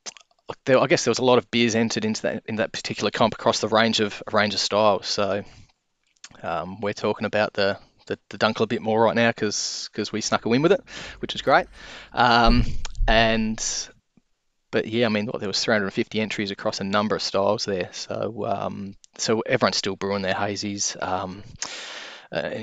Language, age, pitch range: English, 20-39, 110-120 Hz